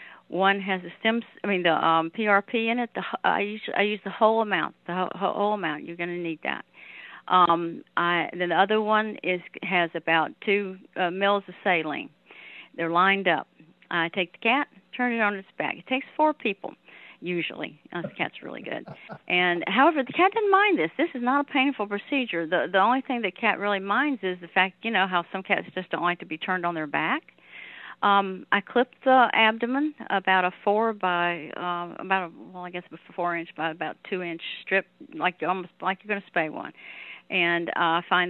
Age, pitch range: 50-69, 180-235 Hz